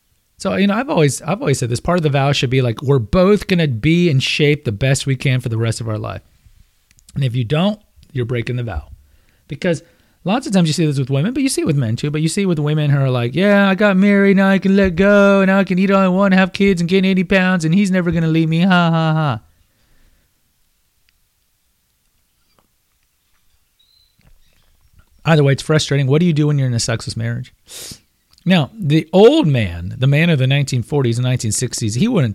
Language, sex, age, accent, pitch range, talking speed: English, male, 30-49, American, 120-175 Hz, 230 wpm